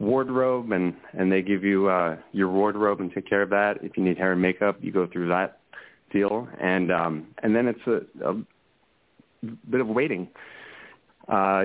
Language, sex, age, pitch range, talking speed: English, male, 30-49, 95-110 Hz, 185 wpm